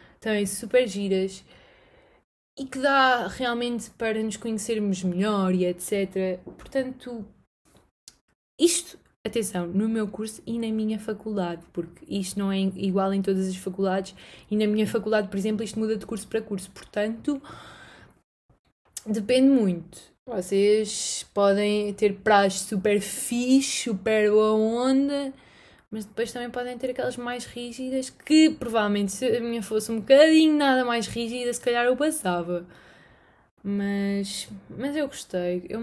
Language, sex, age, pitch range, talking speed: Portuguese, female, 20-39, 190-235 Hz, 145 wpm